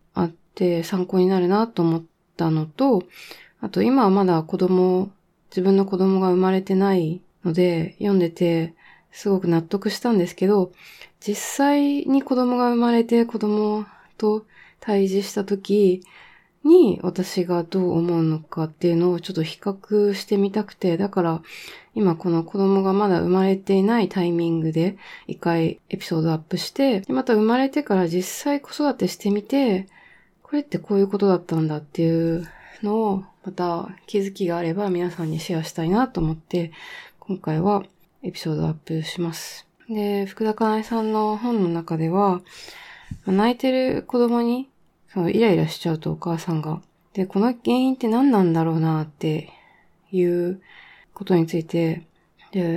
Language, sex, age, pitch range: Japanese, female, 20-39, 170-215 Hz